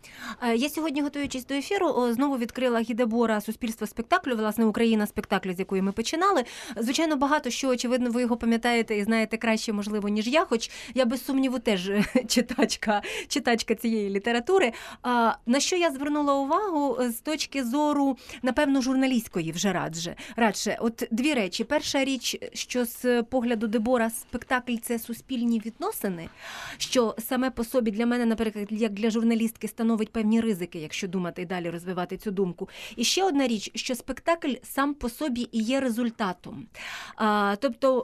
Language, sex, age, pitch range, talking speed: Ukrainian, female, 30-49, 210-265 Hz, 155 wpm